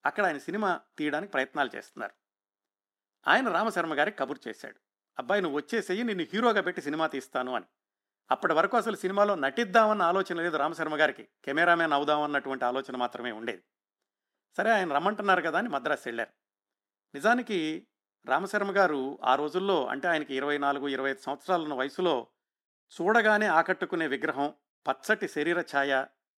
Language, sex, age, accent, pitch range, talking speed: Telugu, male, 50-69, native, 125-180 Hz, 125 wpm